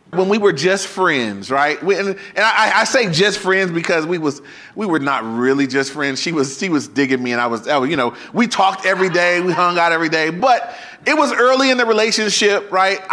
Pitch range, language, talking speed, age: 130-195 Hz, English, 230 wpm, 30-49